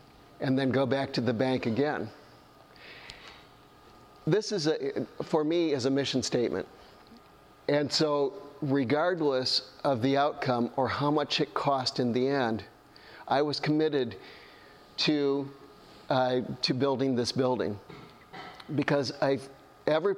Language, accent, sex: English, American, male